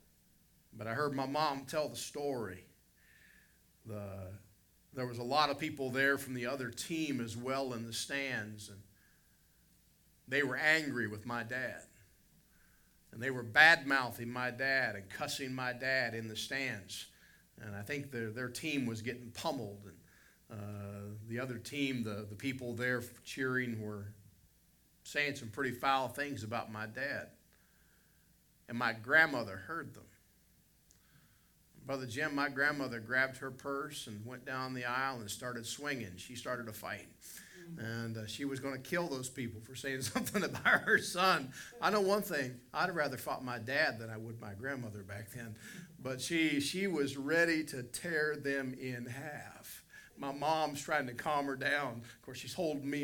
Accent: American